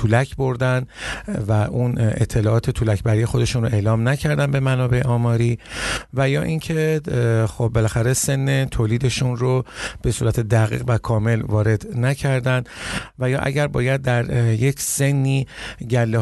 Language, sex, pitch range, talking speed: Persian, male, 115-145 Hz, 135 wpm